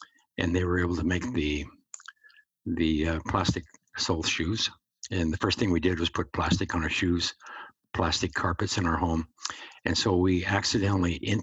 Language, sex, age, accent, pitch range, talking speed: English, male, 60-79, American, 85-100 Hz, 175 wpm